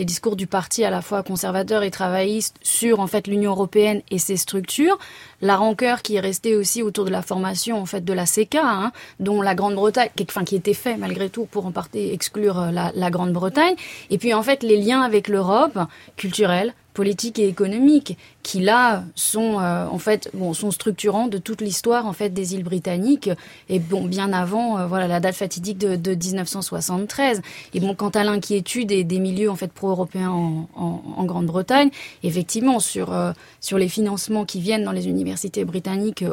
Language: French